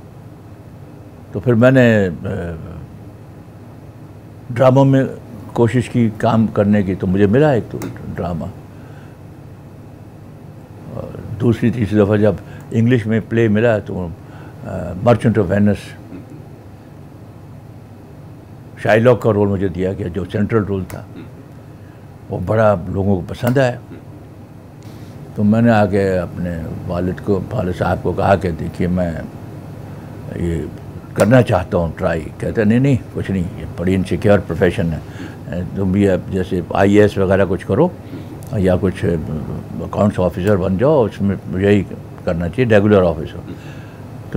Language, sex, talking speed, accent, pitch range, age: Hindi, male, 125 wpm, native, 100-125 Hz, 60-79